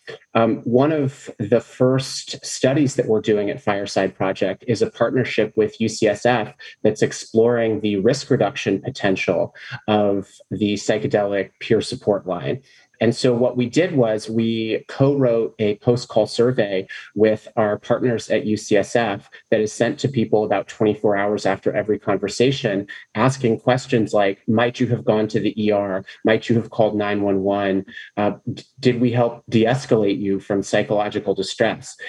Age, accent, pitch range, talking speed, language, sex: 30-49, American, 100-120 Hz, 150 wpm, English, male